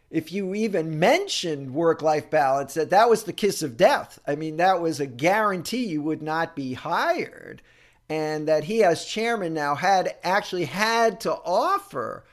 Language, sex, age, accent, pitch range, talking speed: English, male, 50-69, American, 140-185 Hz, 175 wpm